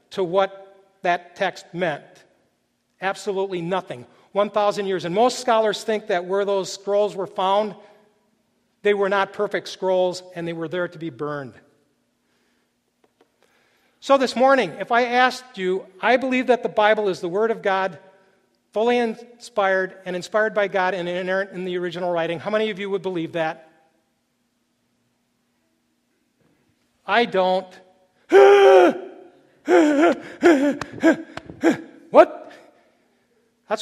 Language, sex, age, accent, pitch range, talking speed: English, male, 50-69, American, 190-235 Hz, 125 wpm